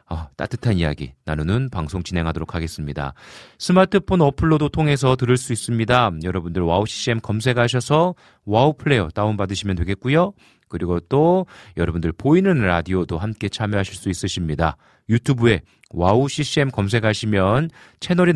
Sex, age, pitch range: male, 40-59, 90-135 Hz